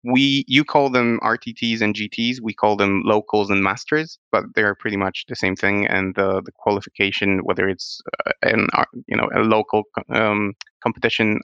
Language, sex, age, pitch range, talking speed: English, male, 20-39, 100-115 Hz, 185 wpm